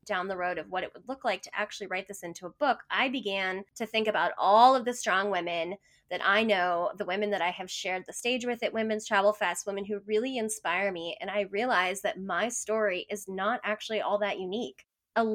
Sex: female